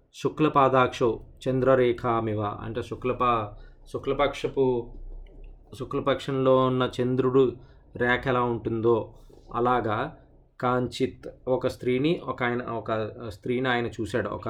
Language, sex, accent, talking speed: Telugu, male, native, 65 wpm